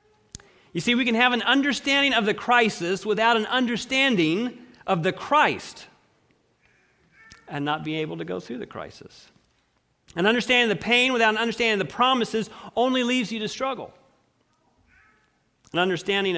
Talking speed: 160 wpm